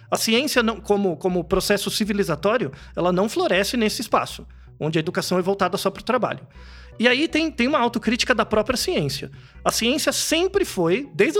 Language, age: Portuguese, 40-59